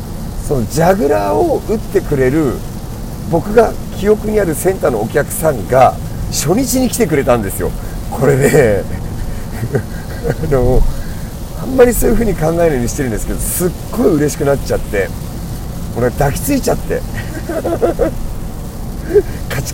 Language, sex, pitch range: Japanese, male, 115-160 Hz